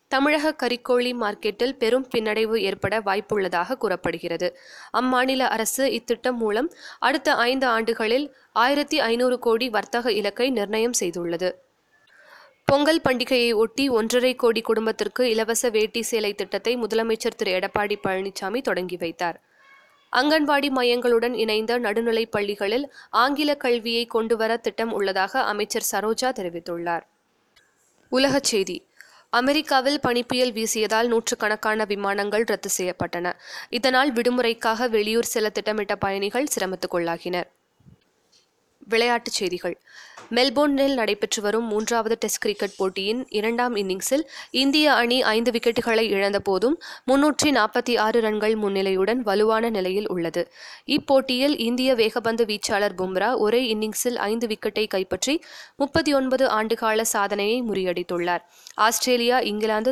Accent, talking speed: native, 105 wpm